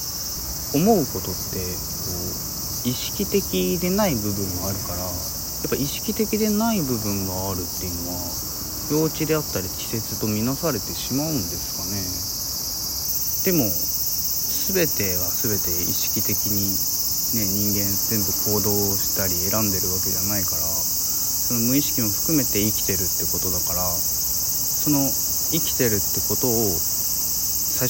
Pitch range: 95-130 Hz